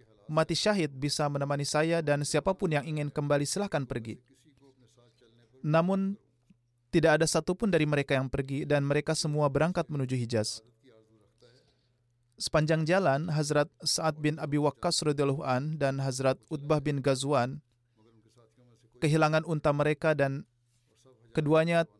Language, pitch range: Indonesian, 120-160 Hz